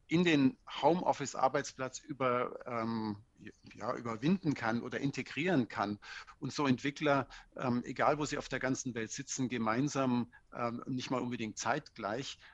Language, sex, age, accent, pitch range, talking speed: German, male, 50-69, German, 120-145 Hz, 140 wpm